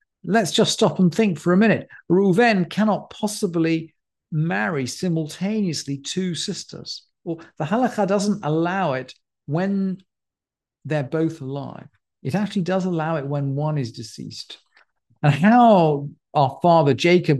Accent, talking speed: British, 140 wpm